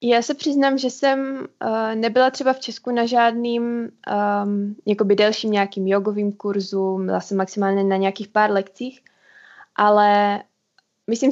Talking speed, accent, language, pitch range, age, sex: 140 wpm, native, Czech, 195-220 Hz, 20-39, female